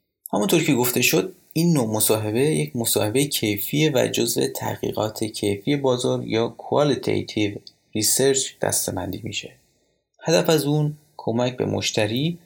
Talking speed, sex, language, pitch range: 125 wpm, male, Persian, 105-140 Hz